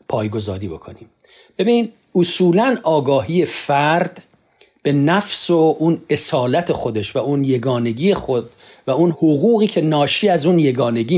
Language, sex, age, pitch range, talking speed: Persian, male, 50-69, 125-175 Hz, 130 wpm